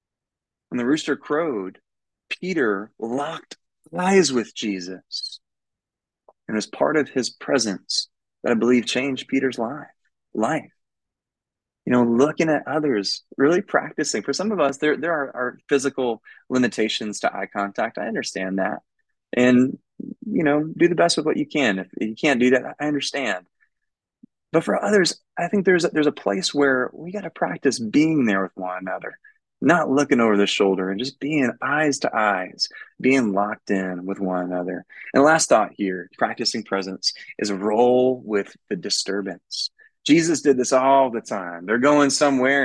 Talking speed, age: 165 wpm, 20-39